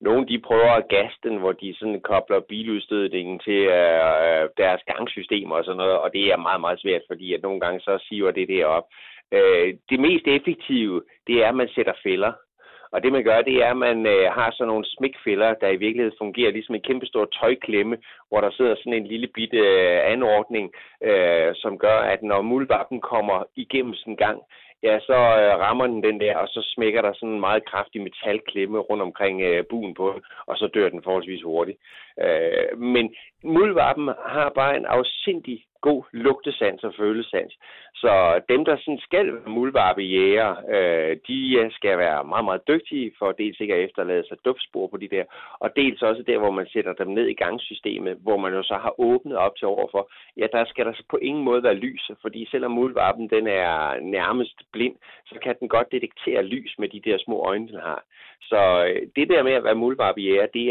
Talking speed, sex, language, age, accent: 200 wpm, male, Danish, 30-49, native